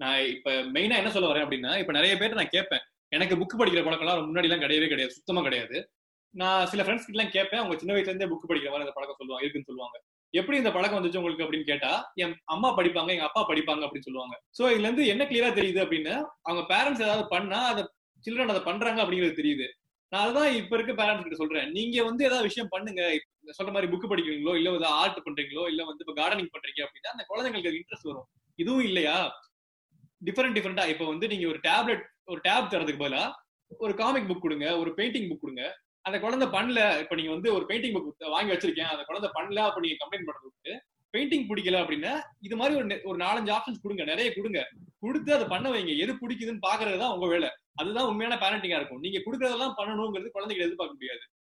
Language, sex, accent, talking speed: Tamil, male, native, 200 wpm